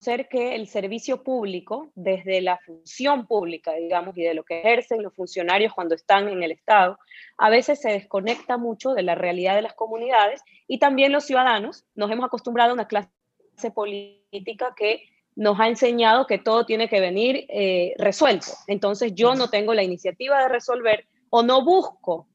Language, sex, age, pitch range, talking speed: Spanish, female, 20-39, 200-250 Hz, 175 wpm